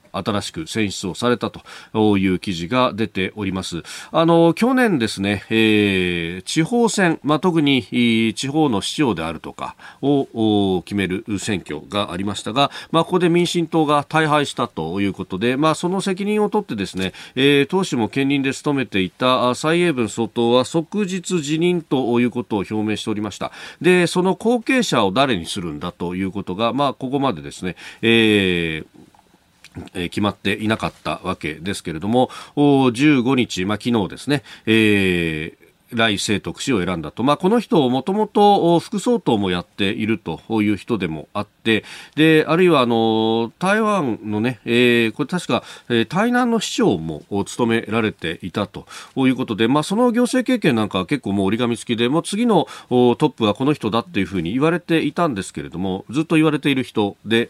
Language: Japanese